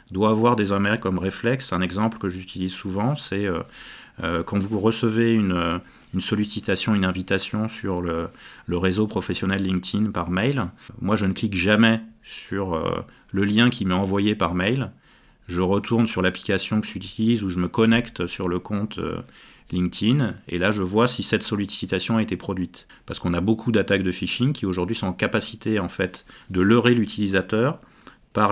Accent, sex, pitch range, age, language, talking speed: French, male, 95-115 Hz, 30-49, French, 175 wpm